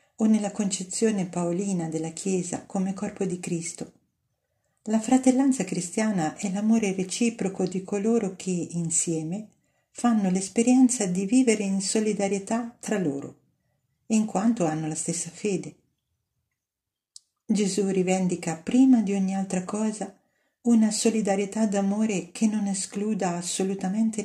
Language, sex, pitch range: Italian, female, 180-220 Hz